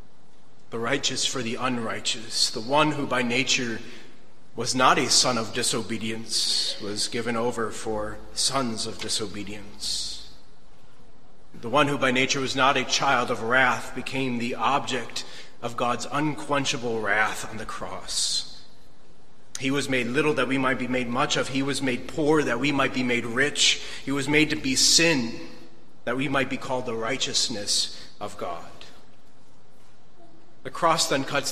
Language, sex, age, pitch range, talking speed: English, male, 30-49, 120-150 Hz, 160 wpm